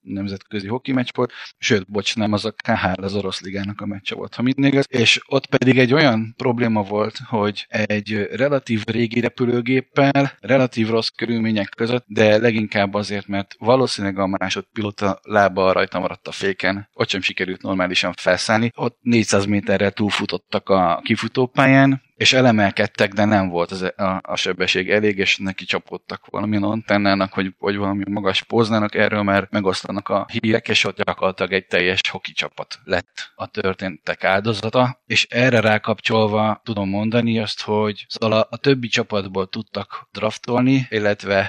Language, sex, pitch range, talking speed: Hungarian, male, 100-120 Hz, 155 wpm